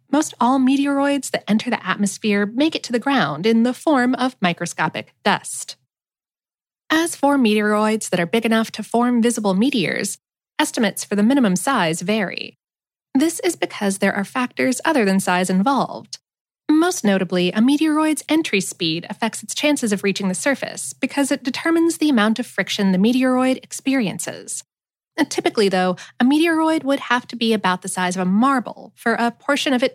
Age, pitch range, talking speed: 20-39, 190-270 Hz, 175 wpm